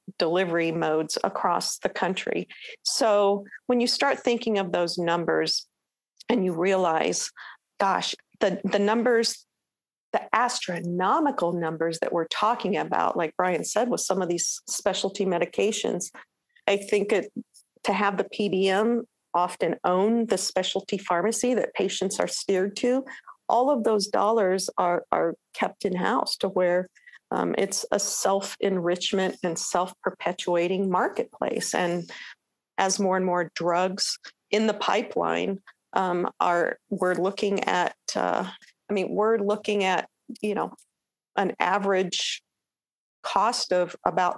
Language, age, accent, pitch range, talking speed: English, 50-69, American, 175-205 Hz, 135 wpm